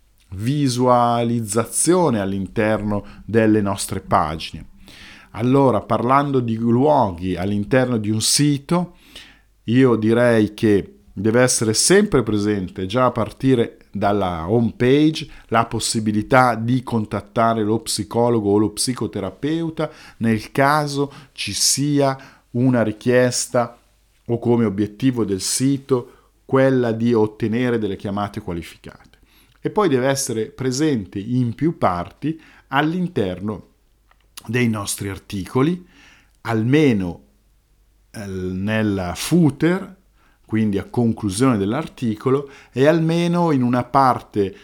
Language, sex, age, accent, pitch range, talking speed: Italian, male, 50-69, native, 100-130 Hz, 100 wpm